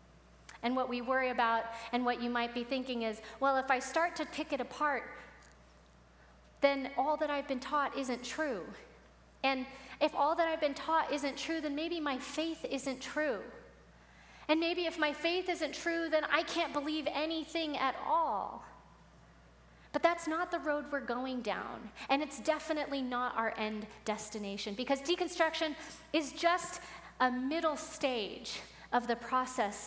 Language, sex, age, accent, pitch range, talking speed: English, female, 30-49, American, 235-300 Hz, 165 wpm